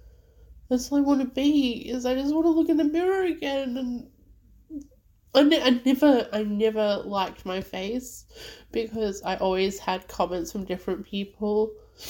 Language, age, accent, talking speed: English, 20-39, Australian, 165 wpm